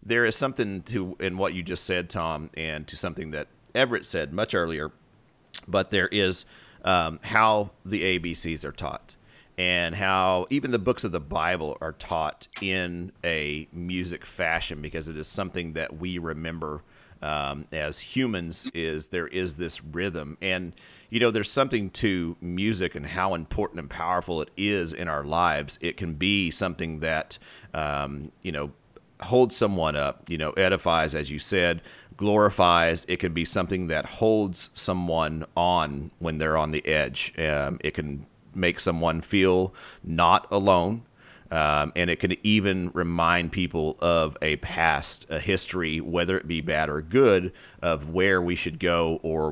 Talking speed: 165 wpm